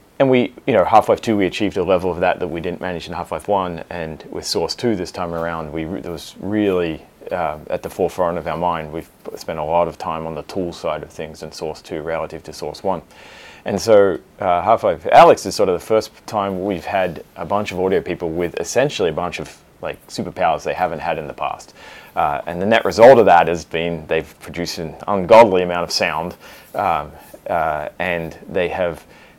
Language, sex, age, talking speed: English, male, 30-49, 225 wpm